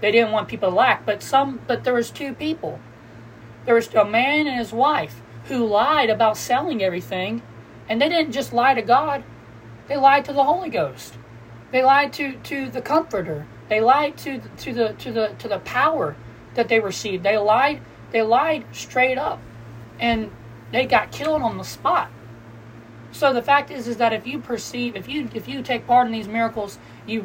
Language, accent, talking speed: English, American, 195 wpm